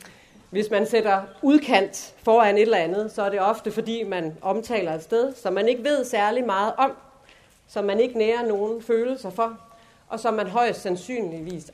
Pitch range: 180-235 Hz